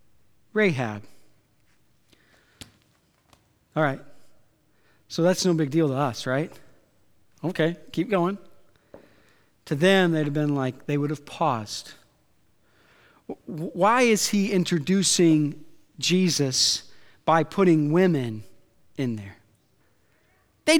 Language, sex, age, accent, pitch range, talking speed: English, male, 40-59, American, 150-225 Hz, 100 wpm